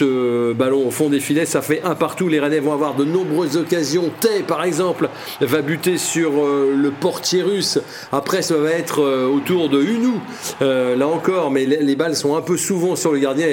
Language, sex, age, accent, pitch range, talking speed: French, male, 40-59, French, 135-170 Hz, 210 wpm